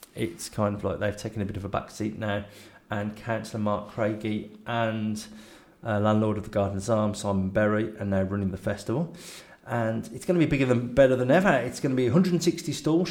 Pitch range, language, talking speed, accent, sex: 105-130 Hz, English, 215 wpm, British, male